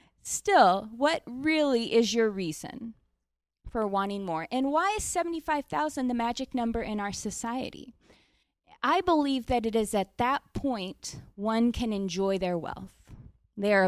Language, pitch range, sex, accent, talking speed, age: English, 180-255 Hz, female, American, 145 wpm, 20-39